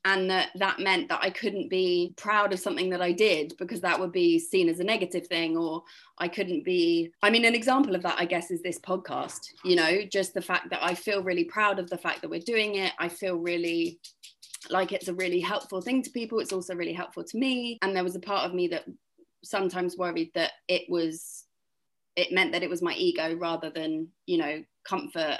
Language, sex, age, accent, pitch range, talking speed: English, female, 20-39, British, 170-205 Hz, 230 wpm